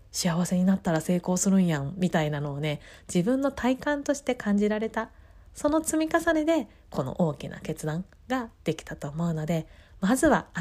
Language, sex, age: Japanese, female, 20-39